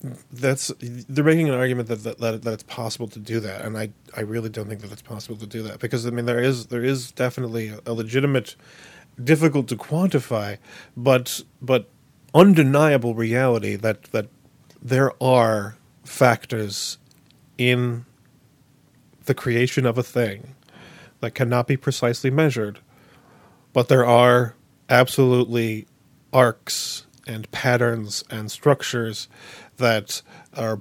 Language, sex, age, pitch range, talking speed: English, male, 40-59, 115-135 Hz, 135 wpm